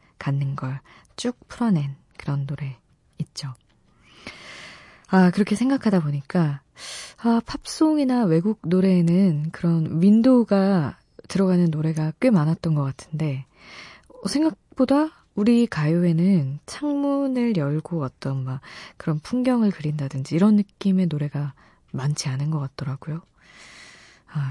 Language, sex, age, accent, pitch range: Korean, female, 20-39, native, 145-205 Hz